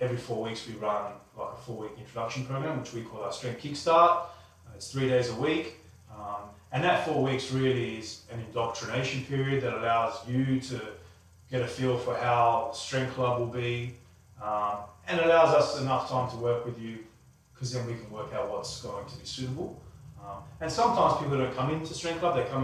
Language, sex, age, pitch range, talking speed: English, male, 30-49, 115-130 Hz, 200 wpm